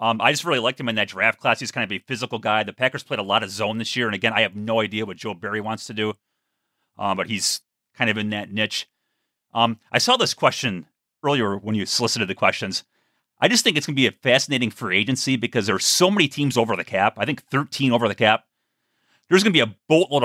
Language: English